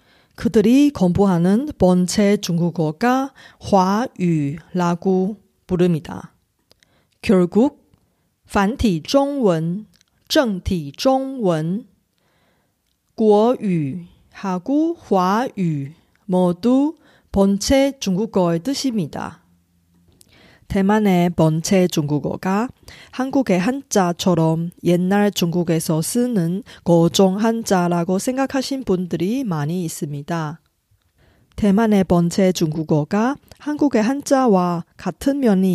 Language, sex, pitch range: Korean, female, 175-230 Hz